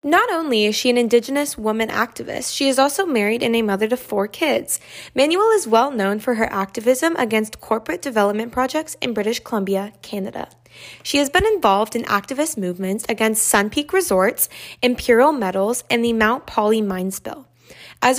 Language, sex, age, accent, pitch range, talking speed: English, female, 20-39, American, 205-255 Hz, 175 wpm